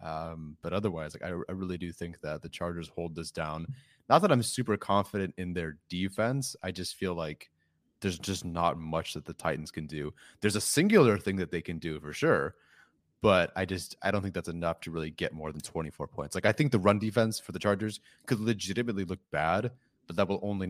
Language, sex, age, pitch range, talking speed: English, male, 30-49, 80-95 Hz, 225 wpm